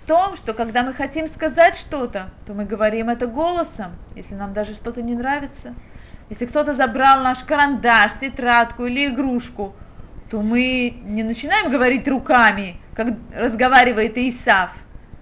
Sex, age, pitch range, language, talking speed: female, 30-49, 220-280 Hz, Russian, 140 wpm